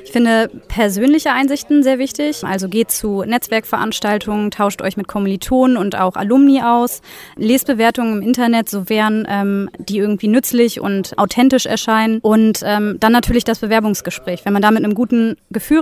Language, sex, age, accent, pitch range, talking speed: German, female, 30-49, German, 190-245 Hz, 165 wpm